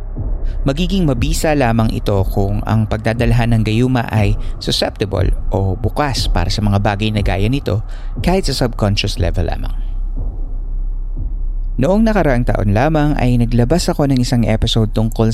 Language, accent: Filipino, native